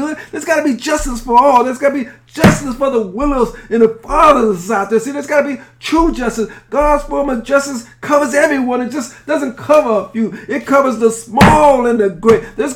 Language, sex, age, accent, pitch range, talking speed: English, male, 50-69, American, 195-275 Hz, 215 wpm